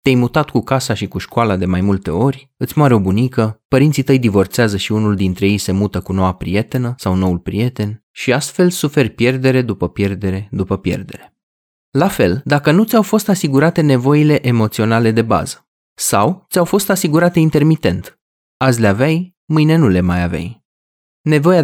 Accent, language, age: native, Romanian, 20-39